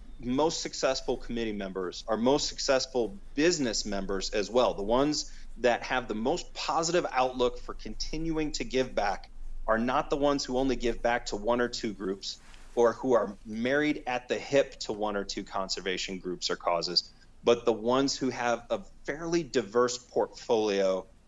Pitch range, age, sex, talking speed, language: 100-130 Hz, 30-49, male, 170 wpm, English